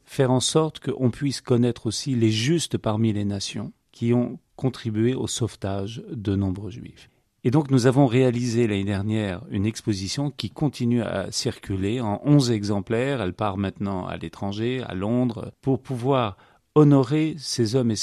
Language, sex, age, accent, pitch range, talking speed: French, male, 40-59, French, 105-130 Hz, 165 wpm